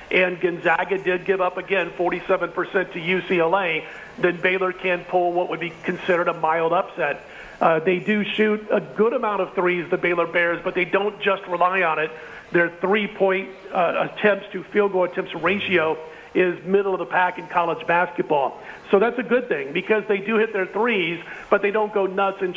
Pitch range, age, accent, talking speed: 175-200 Hz, 40-59, American, 190 wpm